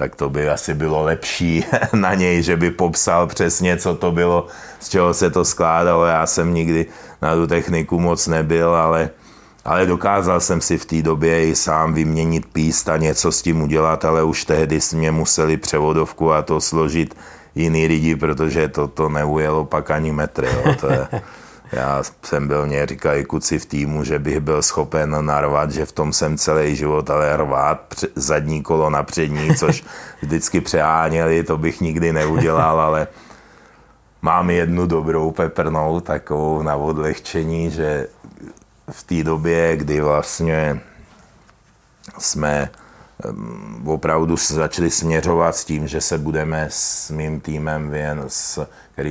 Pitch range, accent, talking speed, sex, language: 75-80 Hz, native, 155 wpm, male, Czech